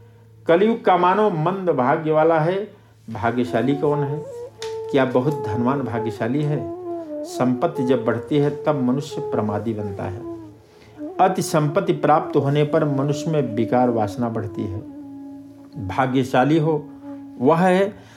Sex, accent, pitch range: male, native, 115-165 Hz